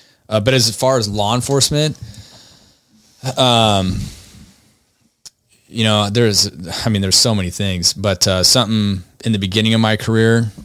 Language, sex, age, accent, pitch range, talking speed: English, male, 20-39, American, 90-110 Hz, 145 wpm